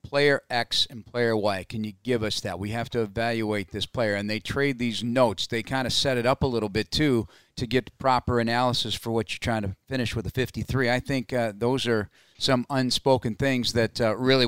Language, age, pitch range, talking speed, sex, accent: English, 40-59, 110-135 Hz, 230 wpm, male, American